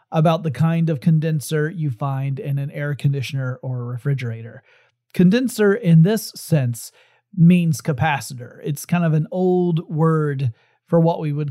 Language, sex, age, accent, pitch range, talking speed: English, male, 40-59, American, 145-175 Hz, 155 wpm